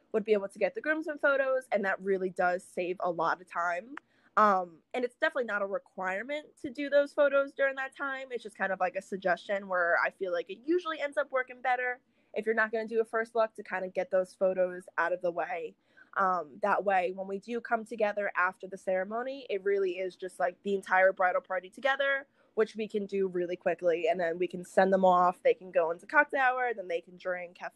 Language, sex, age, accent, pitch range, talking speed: English, female, 20-39, American, 185-255 Hz, 240 wpm